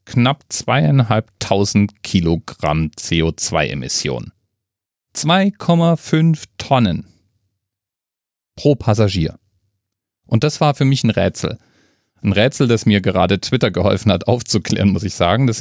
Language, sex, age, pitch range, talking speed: German, male, 40-59, 95-120 Hz, 110 wpm